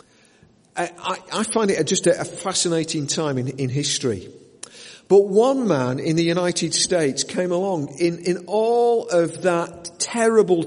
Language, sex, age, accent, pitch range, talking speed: English, male, 50-69, British, 145-190 Hz, 140 wpm